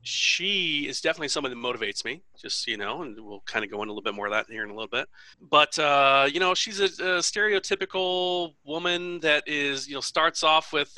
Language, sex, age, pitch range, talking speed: English, male, 40-59, 125-160 Hz, 235 wpm